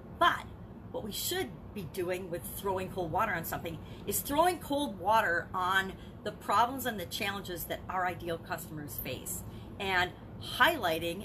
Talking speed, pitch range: 155 wpm, 170-230 Hz